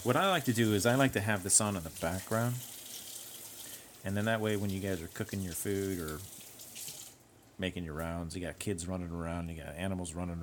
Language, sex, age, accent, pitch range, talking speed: English, male, 30-49, American, 90-115 Hz, 225 wpm